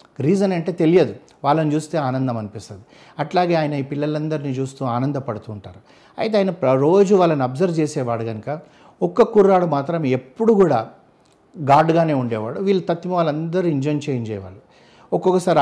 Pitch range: 120-160 Hz